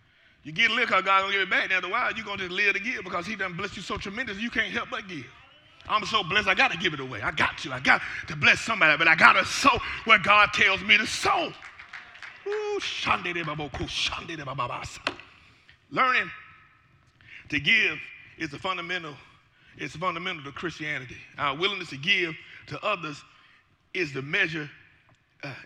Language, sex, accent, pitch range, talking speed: English, male, American, 140-195 Hz, 180 wpm